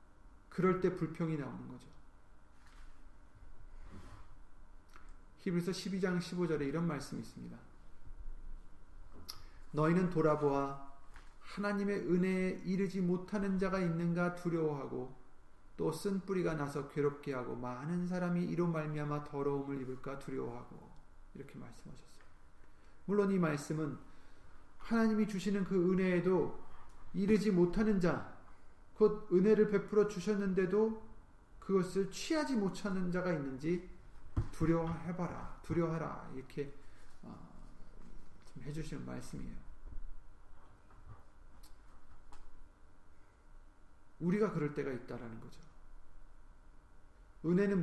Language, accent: Korean, native